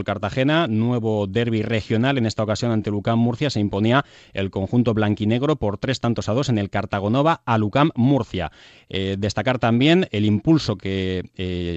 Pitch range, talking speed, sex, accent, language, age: 100-130 Hz, 170 wpm, male, Spanish, Spanish, 30-49